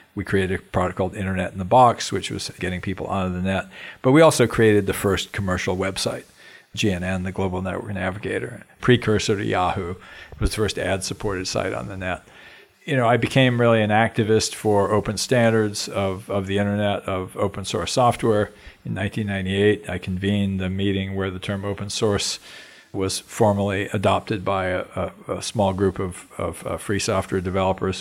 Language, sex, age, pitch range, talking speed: English, male, 50-69, 95-110 Hz, 180 wpm